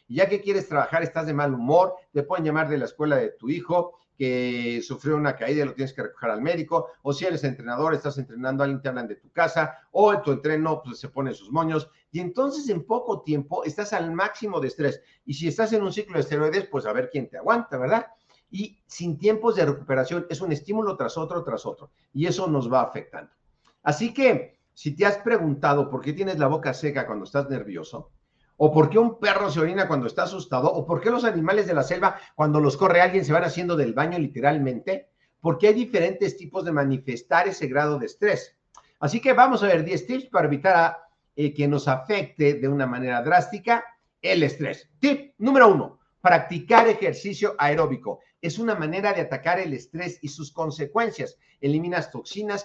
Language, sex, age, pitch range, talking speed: Spanish, male, 50-69, 140-200 Hz, 205 wpm